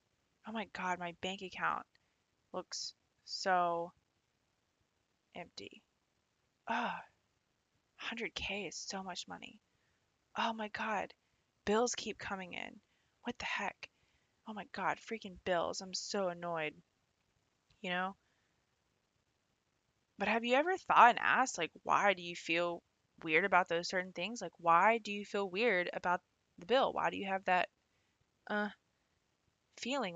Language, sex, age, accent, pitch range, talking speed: English, female, 20-39, American, 170-210 Hz, 135 wpm